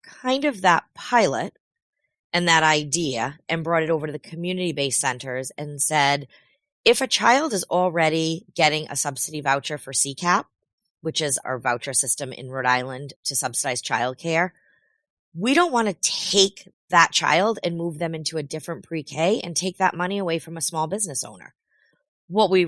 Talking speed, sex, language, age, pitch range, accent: 175 wpm, female, English, 30-49, 140-180 Hz, American